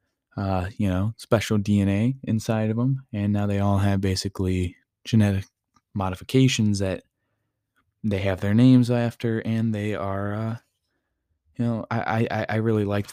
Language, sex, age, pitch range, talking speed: English, male, 20-39, 95-115 Hz, 150 wpm